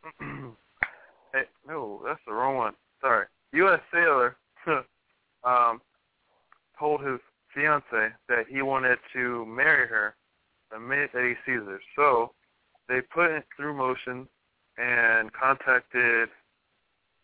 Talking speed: 115 wpm